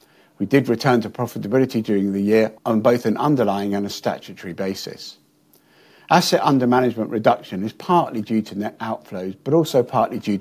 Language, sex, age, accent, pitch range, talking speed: English, male, 50-69, British, 100-125 Hz, 175 wpm